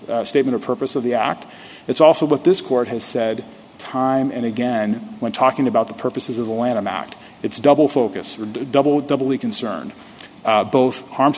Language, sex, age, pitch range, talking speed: English, male, 40-59, 120-150 Hz, 195 wpm